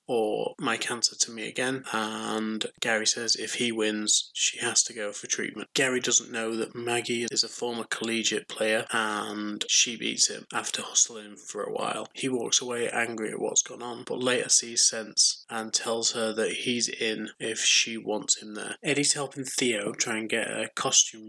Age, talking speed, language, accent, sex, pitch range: 20-39, 190 wpm, English, British, male, 110-125 Hz